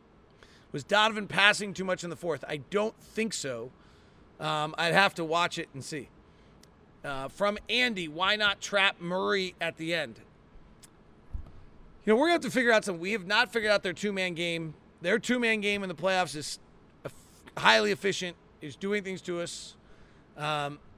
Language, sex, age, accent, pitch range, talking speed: English, male, 40-59, American, 155-205 Hz, 185 wpm